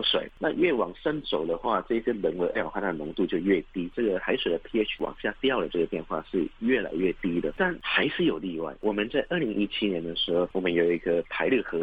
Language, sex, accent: Chinese, male, native